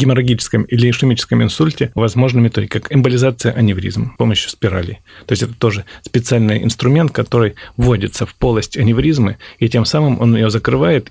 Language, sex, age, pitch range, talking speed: Russian, male, 30-49, 110-130 Hz, 155 wpm